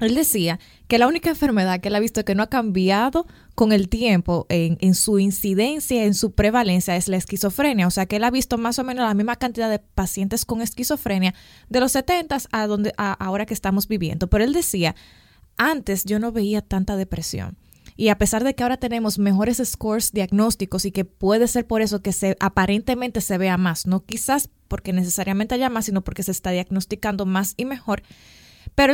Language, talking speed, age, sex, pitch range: Spanish, 205 wpm, 20-39, female, 190-230 Hz